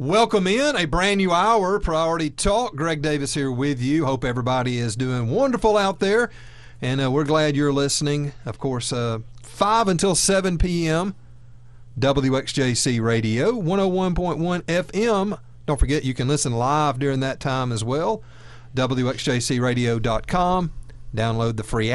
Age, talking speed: 40-59, 140 wpm